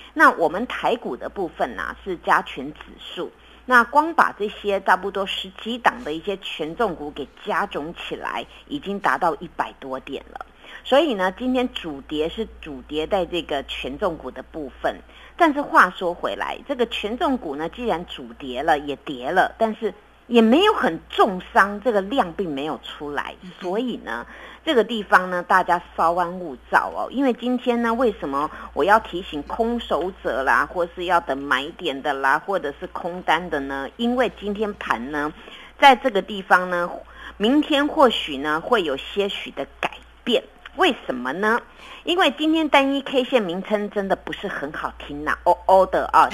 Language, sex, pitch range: Chinese, female, 170-250 Hz